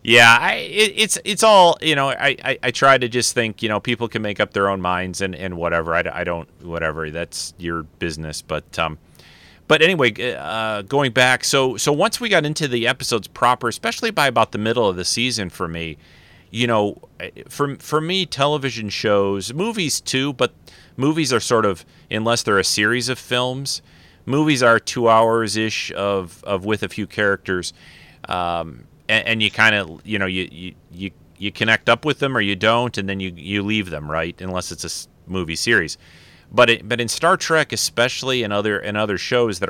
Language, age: English, 30-49